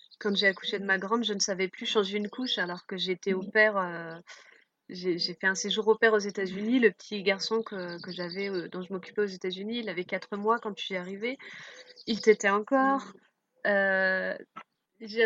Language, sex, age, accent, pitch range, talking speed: French, female, 20-39, French, 185-220 Hz, 205 wpm